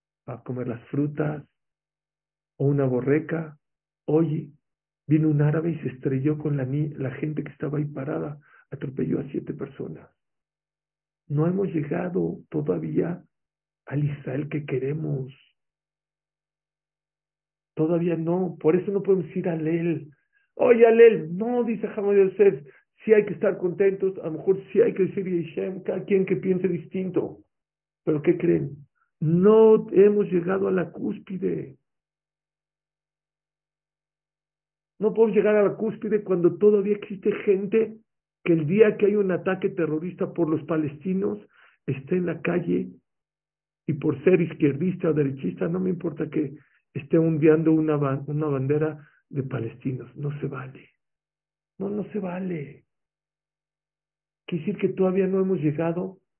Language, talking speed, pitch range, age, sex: English, 140 wpm, 150-190 Hz, 50-69, male